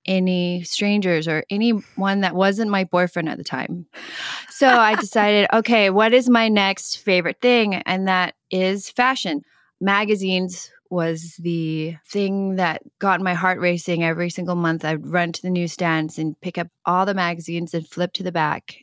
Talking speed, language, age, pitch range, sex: 170 wpm, English, 20-39, 170-210 Hz, female